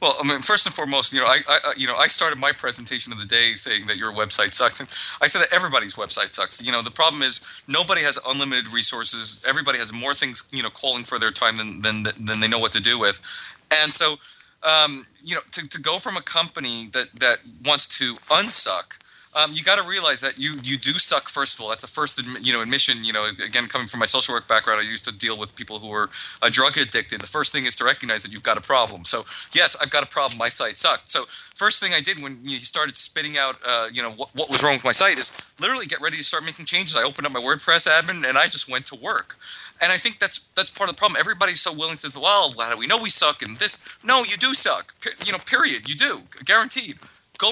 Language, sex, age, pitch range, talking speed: English, male, 30-49, 115-155 Hz, 265 wpm